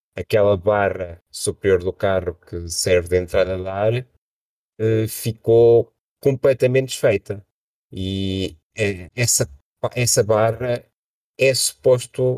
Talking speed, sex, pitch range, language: 105 wpm, male, 95-115 Hz, Portuguese